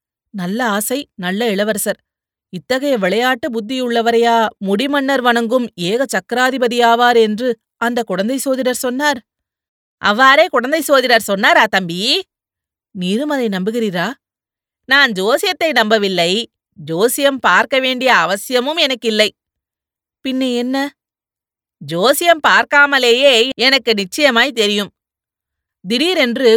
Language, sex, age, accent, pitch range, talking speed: Tamil, female, 30-49, native, 200-250 Hz, 90 wpm